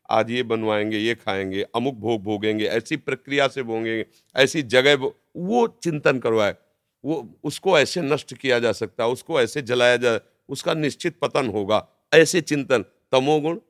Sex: male